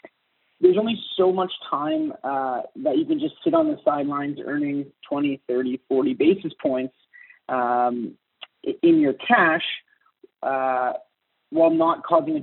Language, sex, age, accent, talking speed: English, male, 30-49, American, 140 wpm